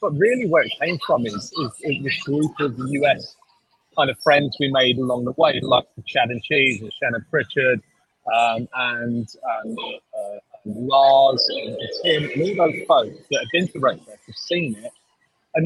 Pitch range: 130-180 Hz